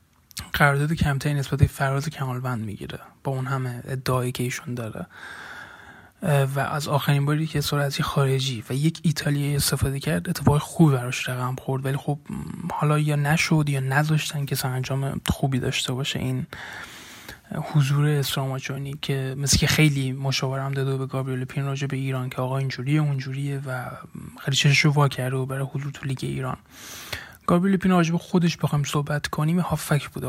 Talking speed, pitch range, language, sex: 160 wpm, 135-150 Hz, Persian, male